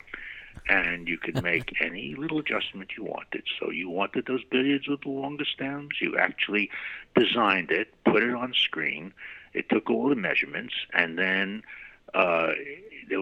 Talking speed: 160 wpm